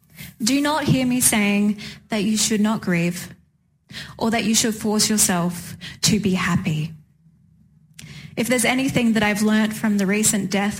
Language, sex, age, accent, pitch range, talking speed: English, female, 20-39, Australian, 170-250 Hz, 160 wpm